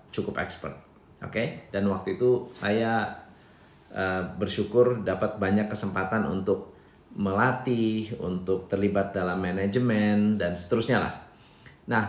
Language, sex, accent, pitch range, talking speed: Indonesian, male, native, 100-140 Hz, 115 wpm